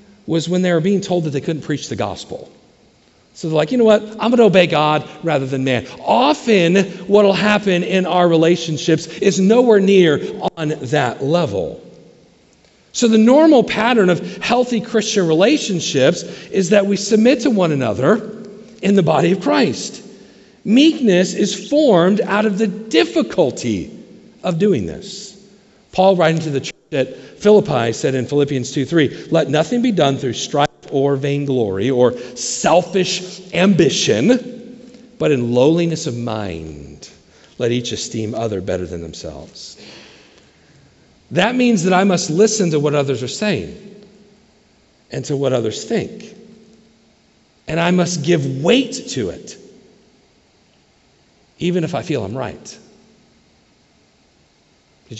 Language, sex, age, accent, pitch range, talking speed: English, male, 50-69, American, 145-210 Hz, 145 wpm